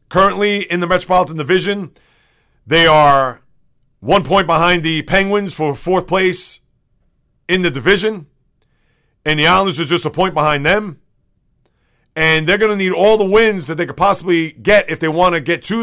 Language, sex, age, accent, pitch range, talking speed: English, male, 40-59, American, 155-195 Hz, 175 wpm